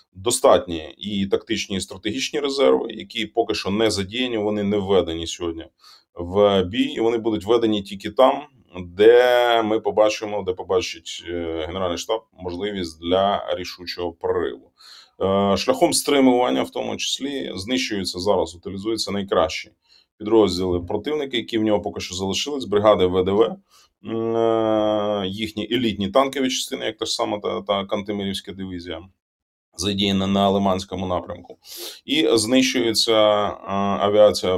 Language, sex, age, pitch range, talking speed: Ukrainian, male, 20-39, 90-115 Hz, 125 wpm